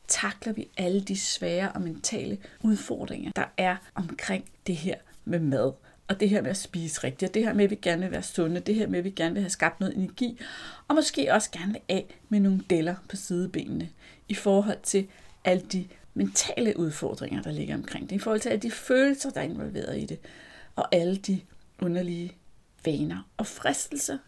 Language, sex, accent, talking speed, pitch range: Danish, female, native, 205 wpm, 180-235 Hz